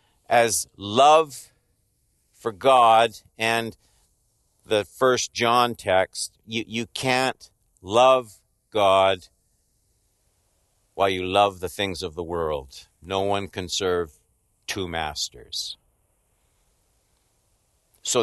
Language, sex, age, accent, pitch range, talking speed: English, male, 60-79, American, 100-140 Hz, 95 wpm